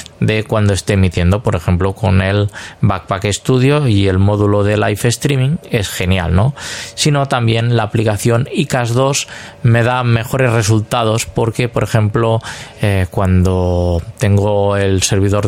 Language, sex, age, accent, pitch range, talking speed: Spanish, male, 20-39, Spanish, 100-120 Hz, 145 wpm